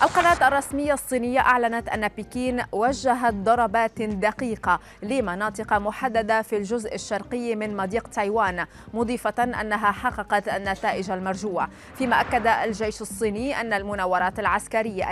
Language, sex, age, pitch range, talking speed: Arabic, female, 20-39, 210-250 Hz, 115 wpm